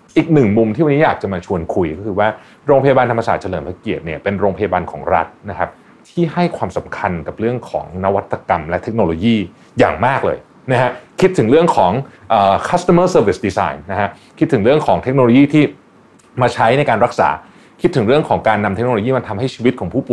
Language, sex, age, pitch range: Thai, male, 30-49, 100-140 Hz